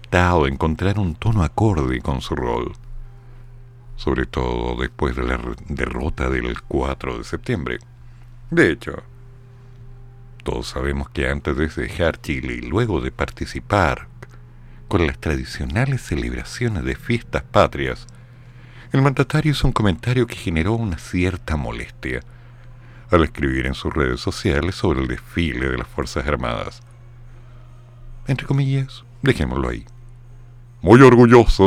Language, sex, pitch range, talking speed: Spanish, male, 75-120 Hz, 125 wpm